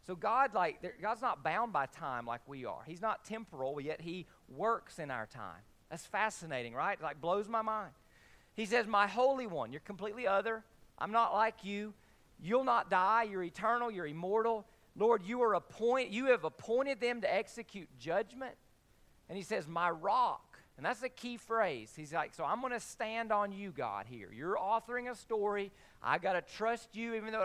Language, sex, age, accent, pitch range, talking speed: English, male, 40-59, American, 190-235 Hz, 195 wpm